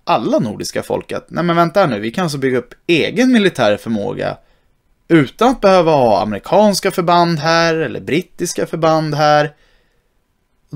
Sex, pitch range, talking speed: male, 125-175 Hz, 155 wpm